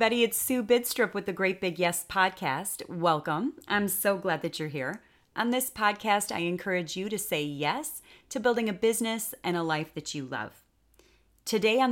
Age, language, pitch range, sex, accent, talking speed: 30-49, English, 175-220 Hz, female, American, 190 wpm